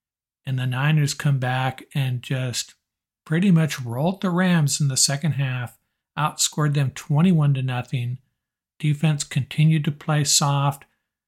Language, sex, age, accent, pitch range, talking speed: English, male, 50-69, American, 130-150 Hz, 140 wpm